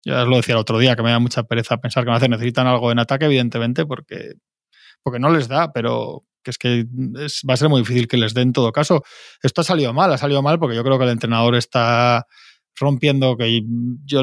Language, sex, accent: Spanish, male, Spanish